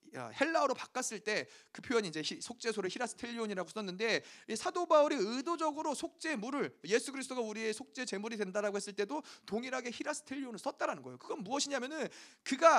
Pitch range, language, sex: 220-290 Hz, Korean, male